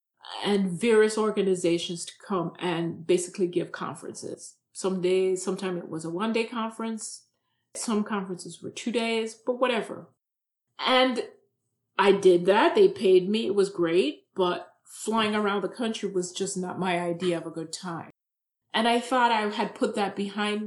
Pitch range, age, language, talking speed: 185-235 Hz, 30-49, English, 165 wpm